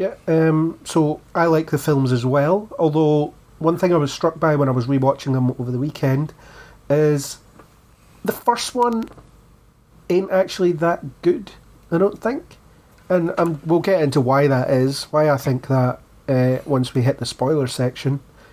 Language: English